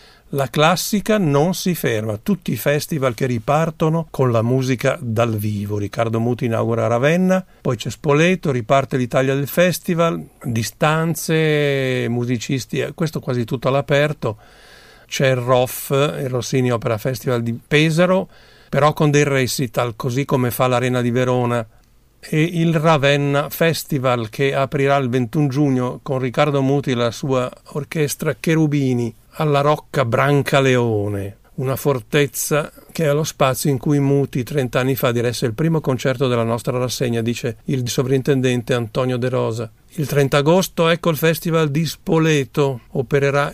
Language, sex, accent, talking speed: Italian, male, native, 145 wpm